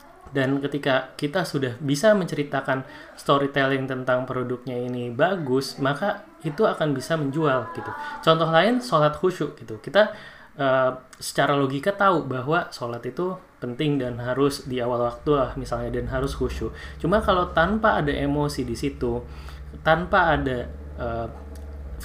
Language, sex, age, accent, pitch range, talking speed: Indonesian, male, 20-39, native, 130-165 Hz, 140 wpm